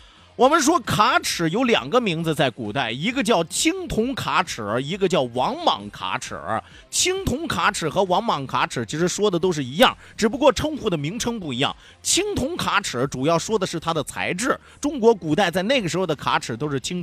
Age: 30-49